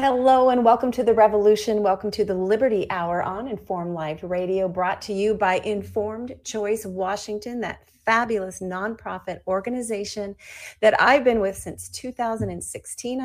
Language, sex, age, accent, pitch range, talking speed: English, female, 40-59, American, 185-225 Hz, 145 wpm